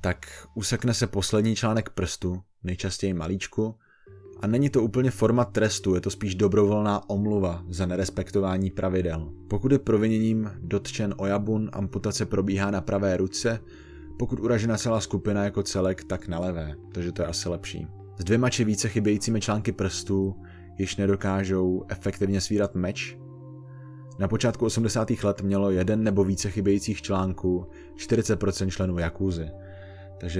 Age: 20-39